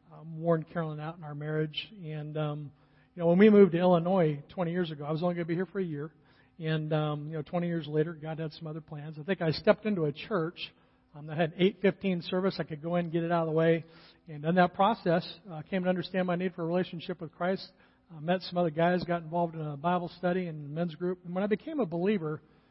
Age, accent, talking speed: 50-69, American, 260 wpm